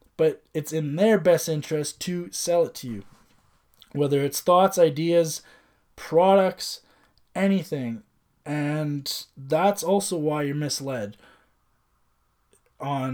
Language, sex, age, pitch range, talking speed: English, male, 20-39, 120-155 Hz, 110 wpm